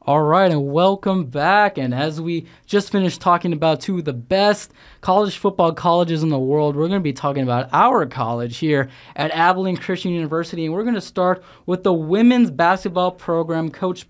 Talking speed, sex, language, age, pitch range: 195 wpm, male, English, 20-39, 145-180 Hz